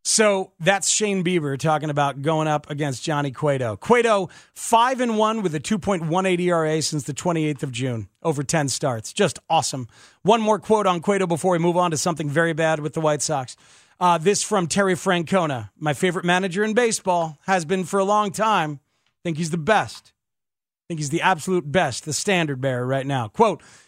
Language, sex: English, male